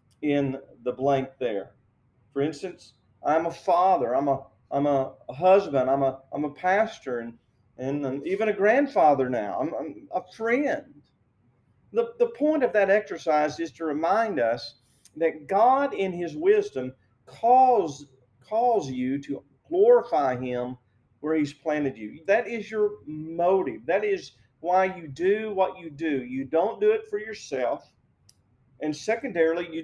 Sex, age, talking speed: male, 40-59, 155 wpm